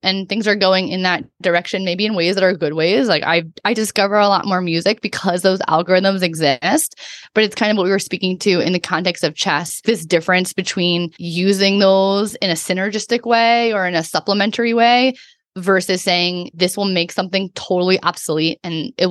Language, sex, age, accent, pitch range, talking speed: English, female, 20-39, American, 180-215 Hz, 200 wpm